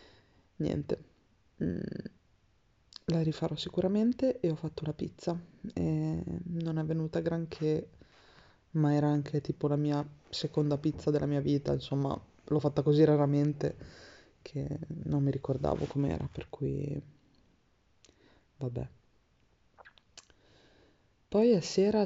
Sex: female